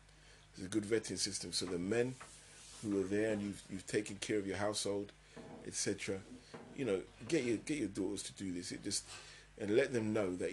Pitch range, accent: 90-120 Hz, British